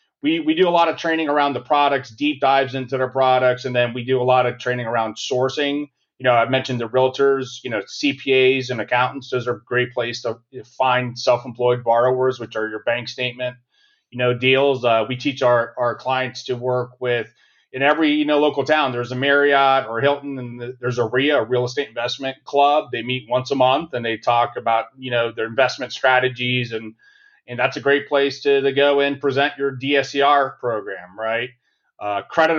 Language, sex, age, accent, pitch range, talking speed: English, male, 30-49, American, 120-140 Hz, 210 wpm